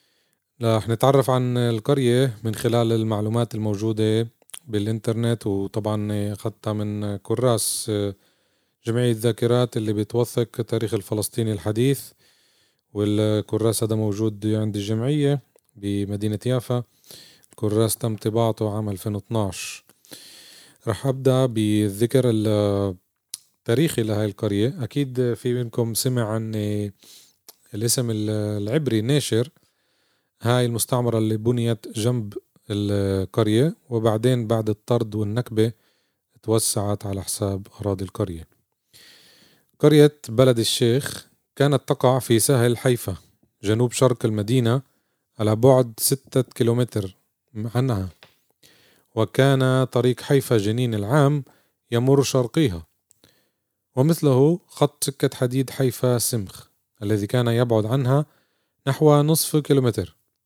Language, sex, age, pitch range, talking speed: Arabic, male, 30-49, 105-125 Hz, 95 wpm